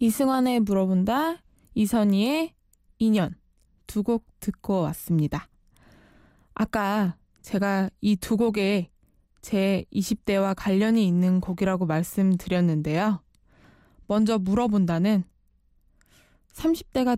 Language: Korean